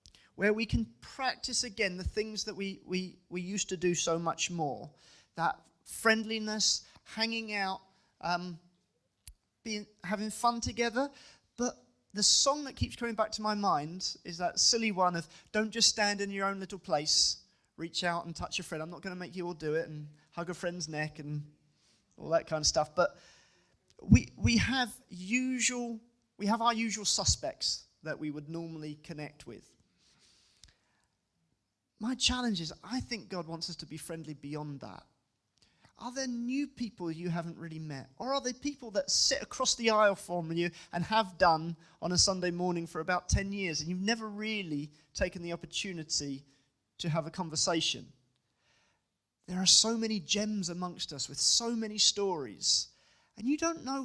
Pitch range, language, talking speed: 160-220 Hz, English, 180 wpm